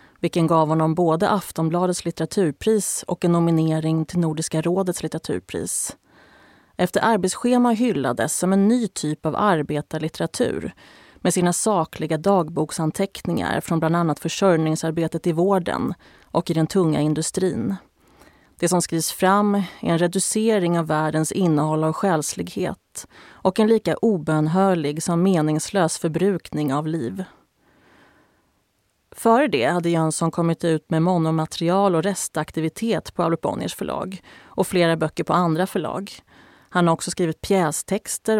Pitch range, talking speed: 160-190 Hz, 130 wpm